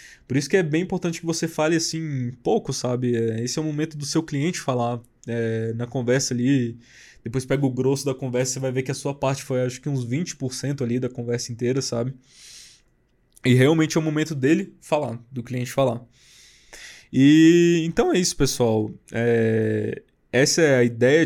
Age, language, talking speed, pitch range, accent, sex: 20-39, Portuguese, 190 wpm, 120-145 Hz, Brazilian, male